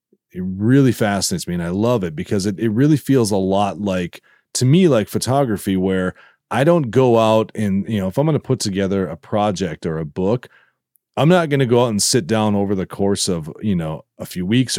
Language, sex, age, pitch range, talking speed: English, male, 30-49, 95-125 Hz, 230 wpm